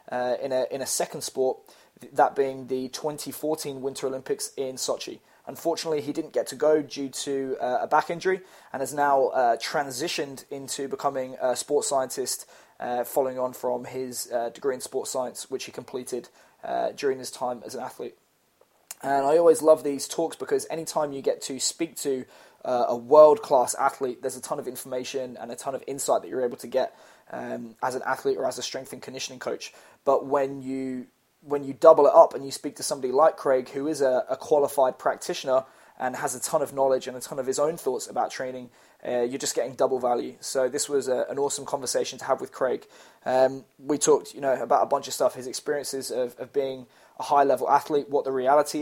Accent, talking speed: British, 215 wpm